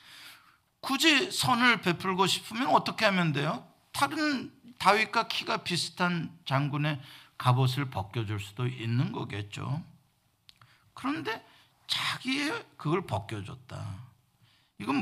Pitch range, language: 120-170 Hz, Korean